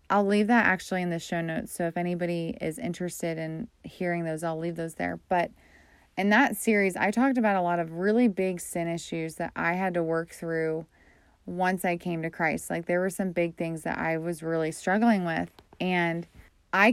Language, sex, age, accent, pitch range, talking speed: English, female, 20-39, American, 170-195 Hz, 210 wpm